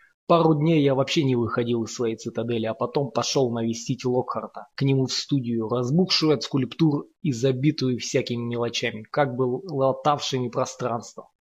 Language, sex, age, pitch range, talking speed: Russian, male, 20-39, 120-155 Hz, 150 wpm